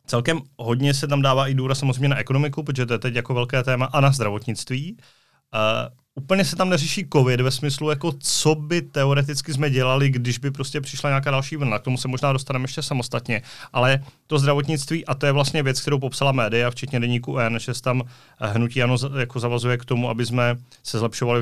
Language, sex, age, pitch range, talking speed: Czech, male, 30-49, 115-135 Hz, 205 wpm